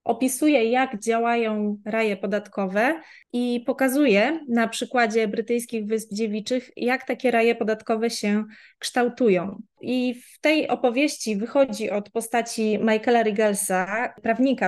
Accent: native